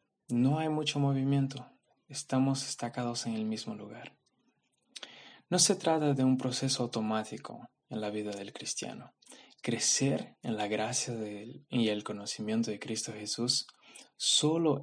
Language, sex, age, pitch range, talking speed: Spanish, male, 20-39, 110-135 Hz, 140 wpm